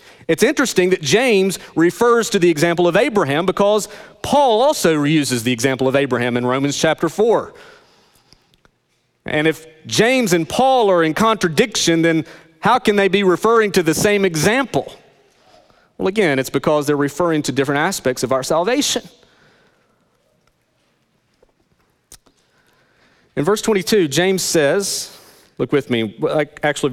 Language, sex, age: English, male, 40-59